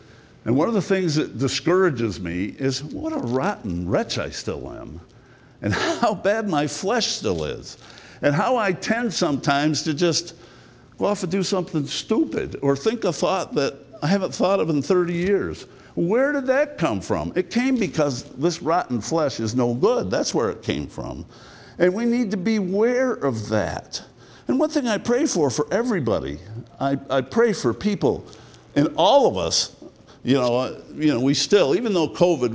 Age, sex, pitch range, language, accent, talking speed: 60-79, male, 130-205 Hz, English, American, 190 wpm